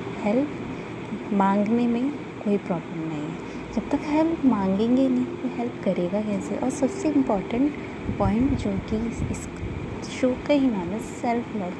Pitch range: 210-265 Hz